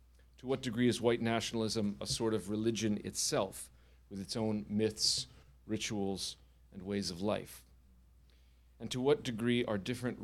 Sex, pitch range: male, 65-110 Hz